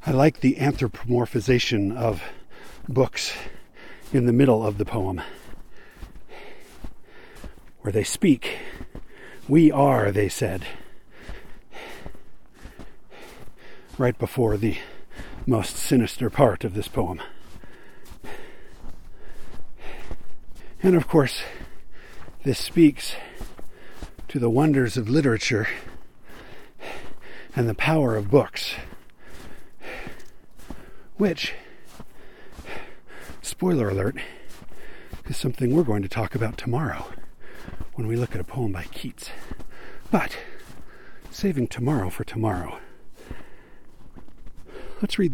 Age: 50-69